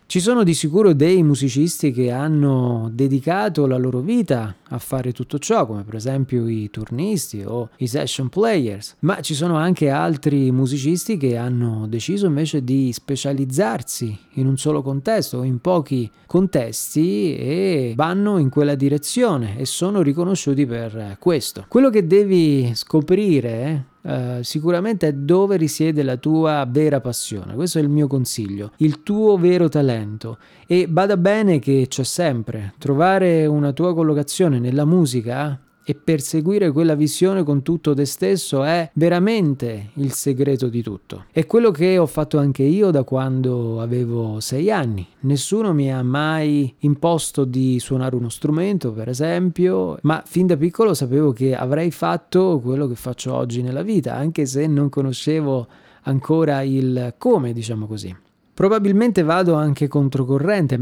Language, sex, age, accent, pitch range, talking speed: Italian, male, 30-49, native, 130-170 Hz, 150 wpm